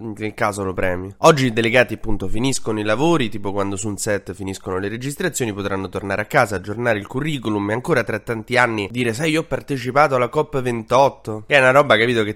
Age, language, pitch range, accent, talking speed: 20-39, Italian, 105-135 Hz, native, 220 wpm